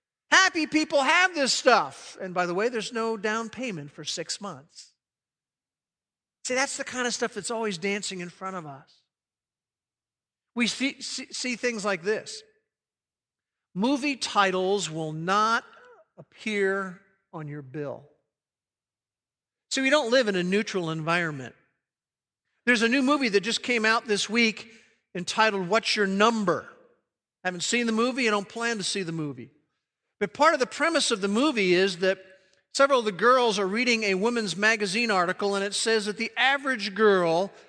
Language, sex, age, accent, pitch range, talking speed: English, male, 50-69, American, 180-240 Hz, 165 wpm